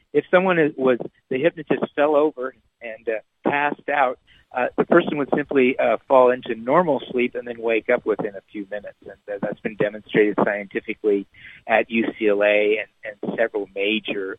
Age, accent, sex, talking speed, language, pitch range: 50-69, American, male, 165 wpm, English, 110-145 Hz